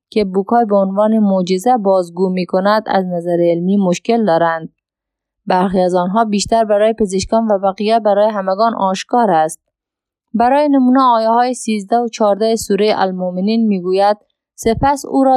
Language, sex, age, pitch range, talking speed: Persian, female, 20-39, 185-230 Hz, 150 wpm